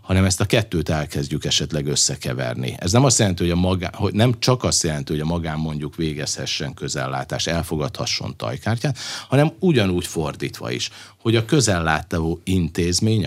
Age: 50-69